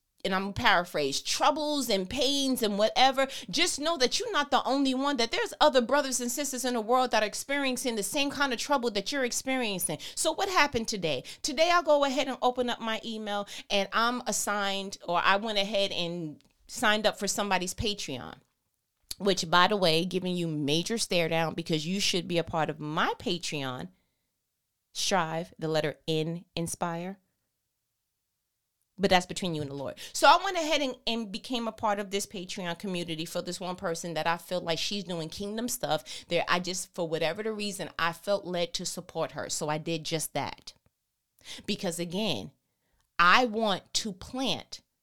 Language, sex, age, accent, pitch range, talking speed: English, female, 30-49, American, 175-250 Hz, 190 wpm